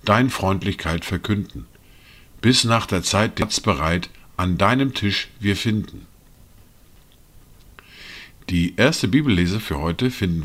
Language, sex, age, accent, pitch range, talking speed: German, male, 50-69, German, 90-115 Hz, 115 wpm